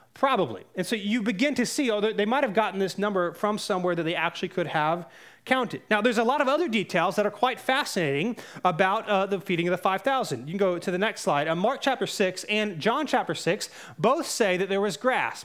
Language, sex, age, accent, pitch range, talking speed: English, male, 30-49, American, 170-225 Hz, 235 wpm